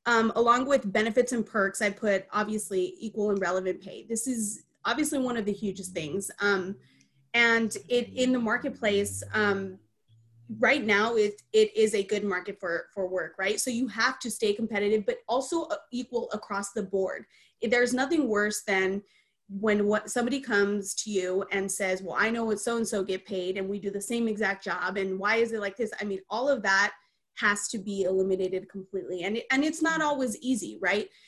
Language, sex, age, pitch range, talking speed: English, female, 20-39, 195-235 Hz, 195 wpm